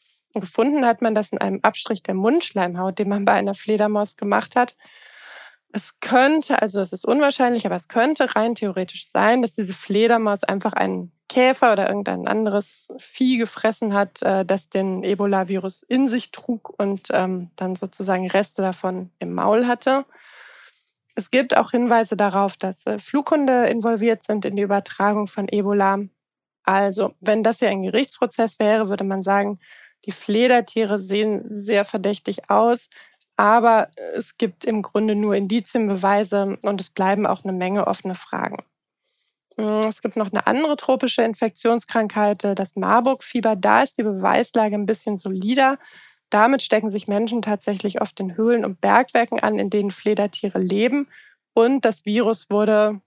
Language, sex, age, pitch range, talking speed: German, female, 20-39, 200-235 Hz, 150 wpm